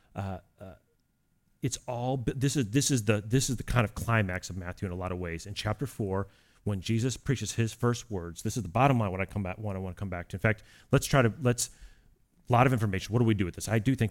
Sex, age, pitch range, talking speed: male, 30-49, 95-130 Hz, 285 wpm